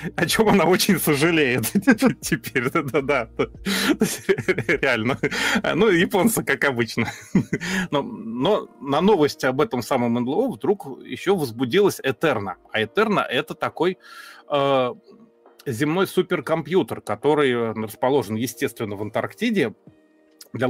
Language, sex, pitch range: Russian, male, 120-160 Hz